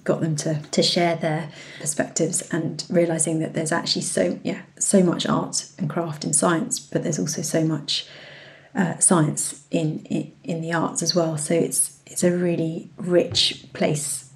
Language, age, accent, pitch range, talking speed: English, 30-49, British, 165-185 Hz, 175 wpm